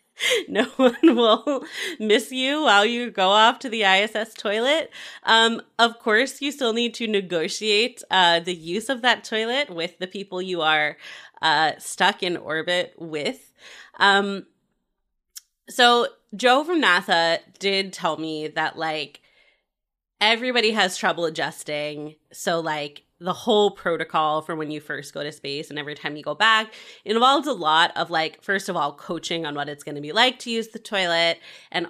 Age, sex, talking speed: 20-39, female, 170 wpm